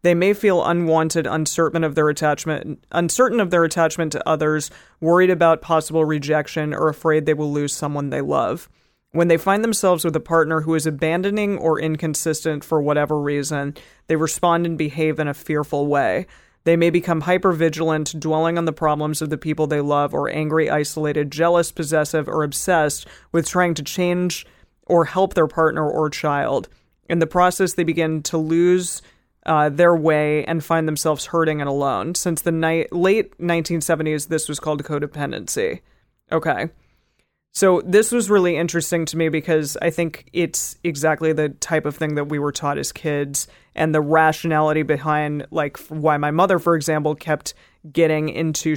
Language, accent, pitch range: English, American, 150-170 Hz